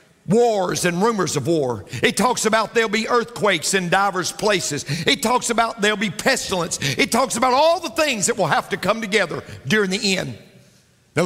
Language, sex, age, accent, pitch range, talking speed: English, male, 50-69, American, 150-230 Hz, 190 wpm